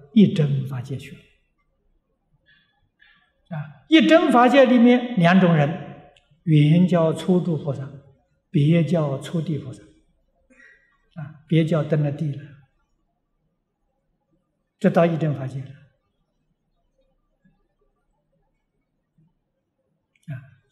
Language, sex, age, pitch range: Chinese, male, 60-79, 140-175 Hz